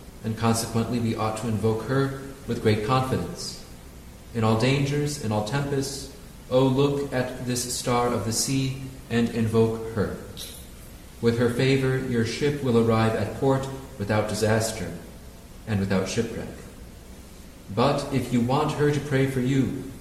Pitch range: 105-130 Hz